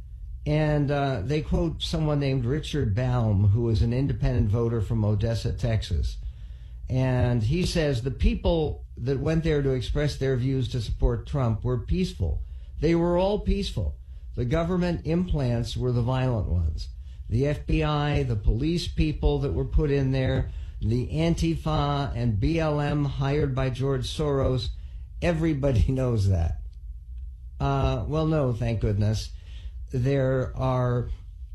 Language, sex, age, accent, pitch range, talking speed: English, male, 60-79, American, 100-145 Hz, 135 wpm